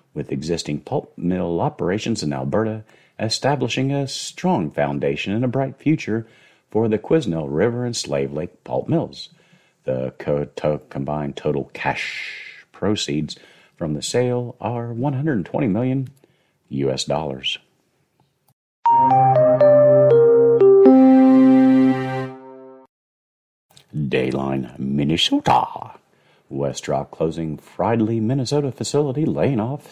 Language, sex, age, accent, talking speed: English, male, 50-69, American, 90 wpm